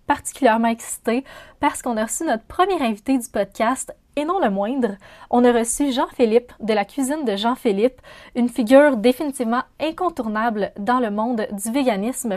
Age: 20-39